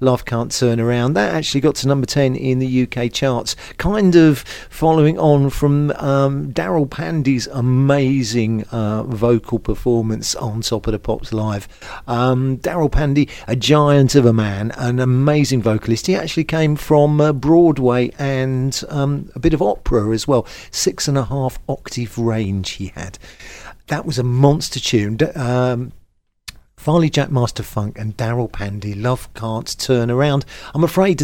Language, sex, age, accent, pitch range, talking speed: English, male, 50-69, British, 115-145 Hz, 160 wpm